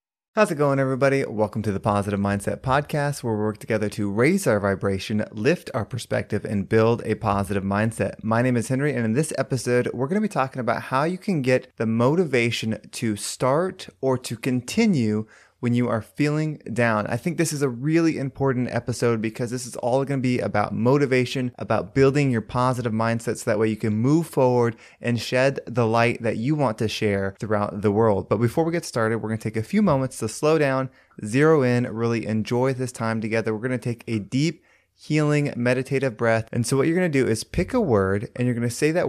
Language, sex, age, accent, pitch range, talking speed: English, male, 20-39, American, 110-135 Hz, 220 wpm